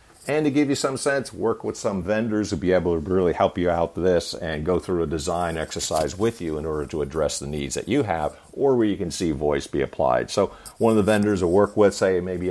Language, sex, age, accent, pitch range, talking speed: English, male, 50-69, American, 85-115 Hz, 265 wpm